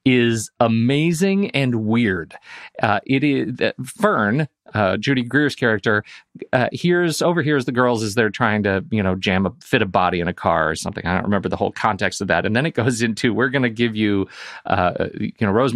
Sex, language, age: male, English, 40-59